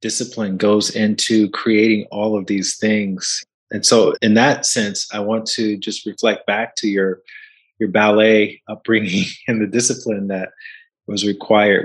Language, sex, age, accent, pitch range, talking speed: English, male, 30-49, American, 100-115 Hz, 150 wpm